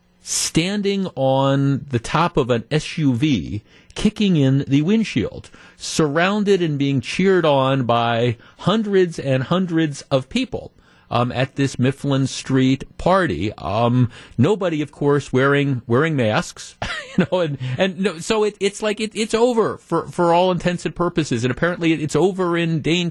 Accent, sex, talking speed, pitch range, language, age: American, male, 155 wpm, 115-165 Hz, English, 50-69